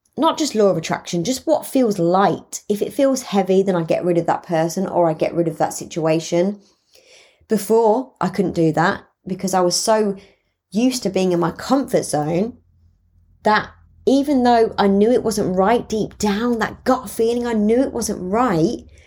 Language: English